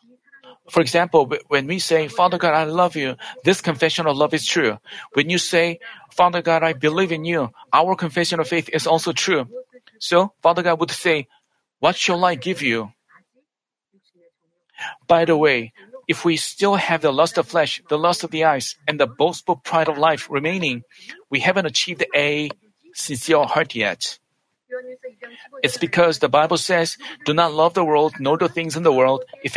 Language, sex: Korean, male